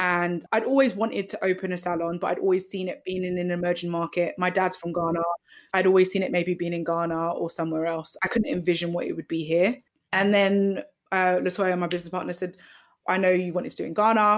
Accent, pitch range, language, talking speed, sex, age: British, 180-225 Hz, English, 240 wpm, female, 20-39